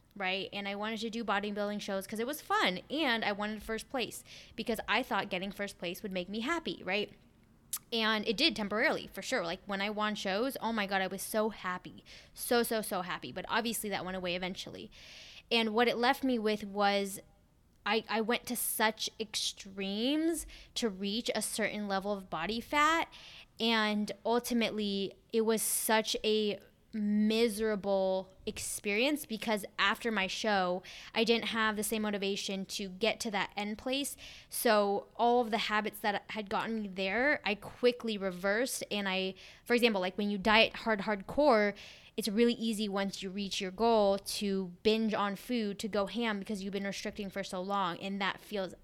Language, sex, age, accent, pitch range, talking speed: English, female, 10-29, American, 195-225 Hz, 185 wpm